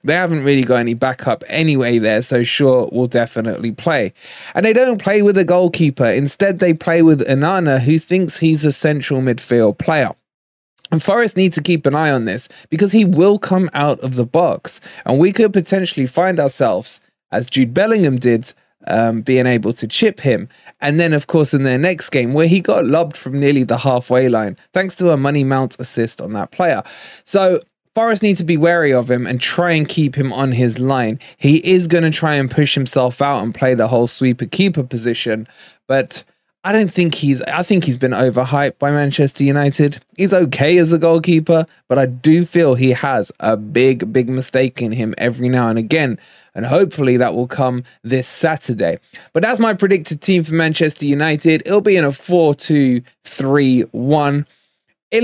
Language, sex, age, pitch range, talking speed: English, male, 20-39, 130-180 Hz, 195 wpm